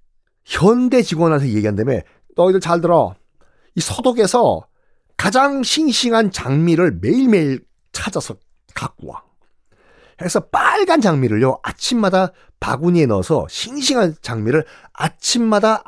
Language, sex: Korean, male